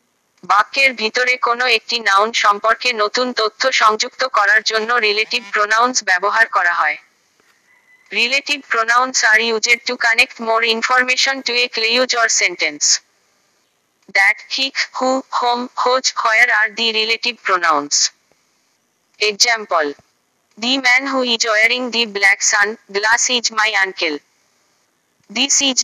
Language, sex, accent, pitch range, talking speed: Bengali, female, native, 215-250 Hz, 70 wpm